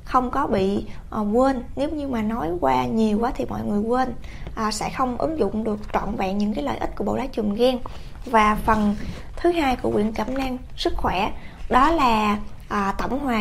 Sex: female